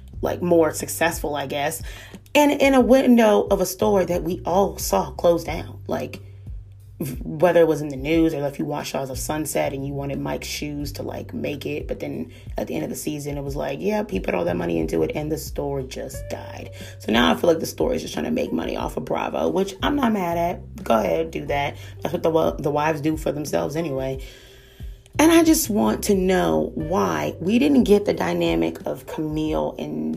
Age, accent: 30-49, American